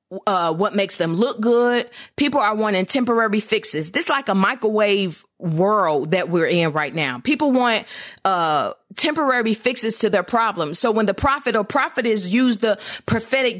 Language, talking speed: English, 175 wpm